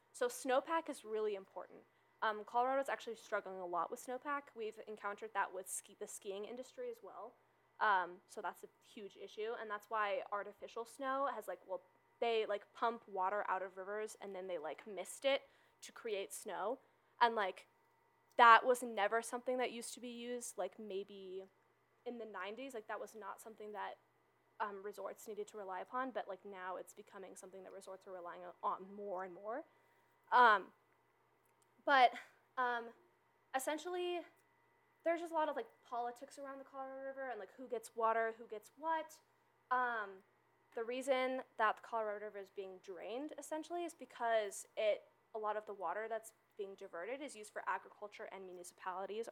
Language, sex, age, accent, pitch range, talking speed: English, female, 10-29, American, 200-260 Hz, 175 wpm